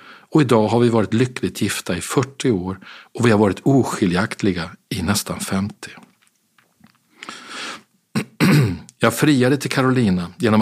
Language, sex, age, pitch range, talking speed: Swedish, male, 50-69, 100-125 Hz, 130 wpm